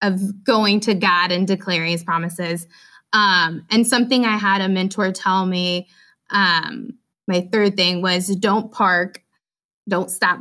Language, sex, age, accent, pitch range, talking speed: English, female, 20-39, American, 175-210 Hz, 150 wpm